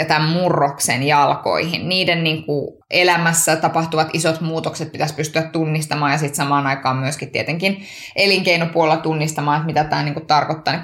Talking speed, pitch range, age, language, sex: 155 wpm, 150-190 Hz, 20-39, Finnish, female